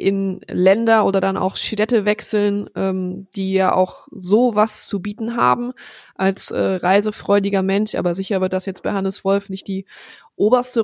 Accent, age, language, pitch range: German, 20-39, German, 190-210 Hz